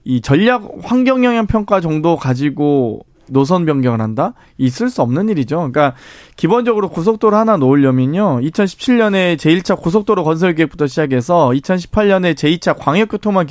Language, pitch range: Korean, 150-215 Hz